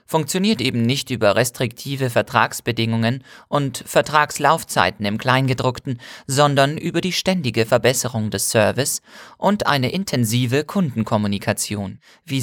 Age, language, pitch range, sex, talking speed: 40-59, German, 115-150 Hz, male, 105 wpm